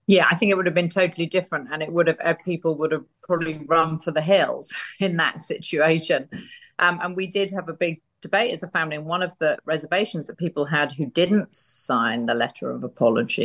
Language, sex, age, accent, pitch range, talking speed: English, female, 40-59, British, 150-190 Hz, 225 wpm